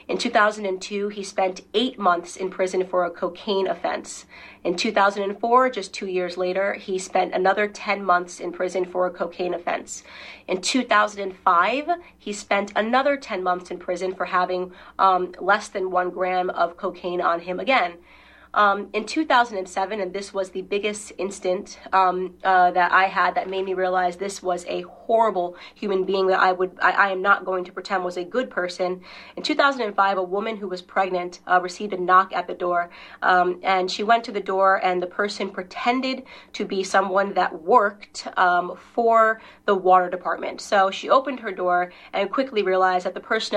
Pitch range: 180-205 Hz